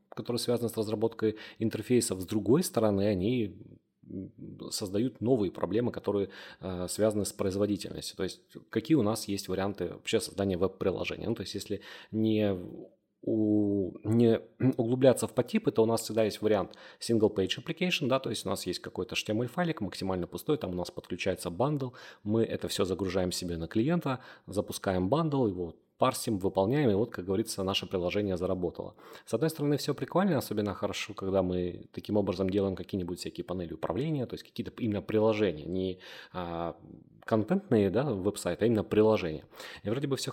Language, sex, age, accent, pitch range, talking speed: Russian, male, 30-49, native, 95-125 Hz, 165 wpm